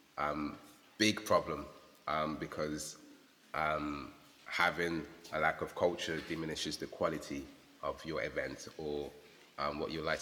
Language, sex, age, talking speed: English, male, 20-39, 130 wpm